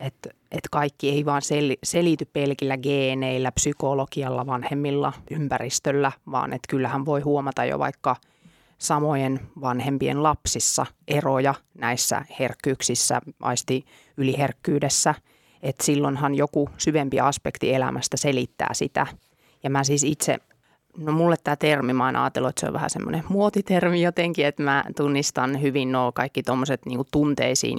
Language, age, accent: Finnish, 30-49, native